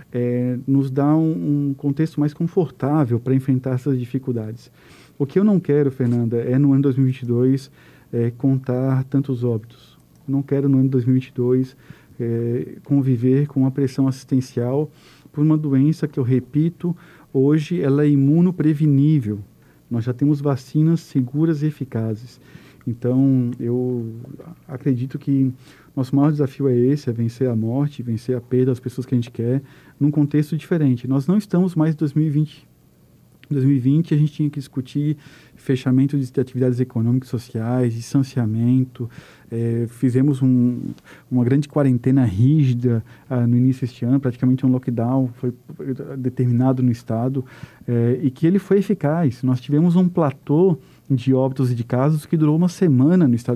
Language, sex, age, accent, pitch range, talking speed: Portuguese, male, 50-69, Brazilian, 125-145 Hz, 150 wpm